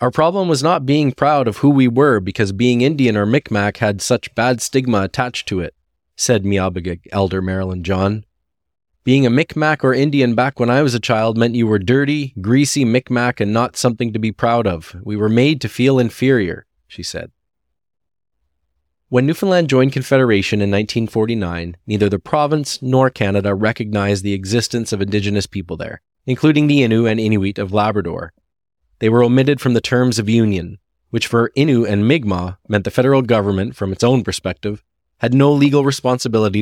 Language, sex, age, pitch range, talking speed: English, male, 20-39, 95-125 Hz, 180 wpm